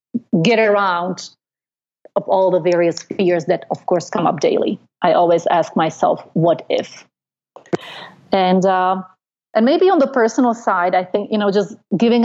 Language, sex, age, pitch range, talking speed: English, female, 30-49, 180-205 Hz, 160 wpm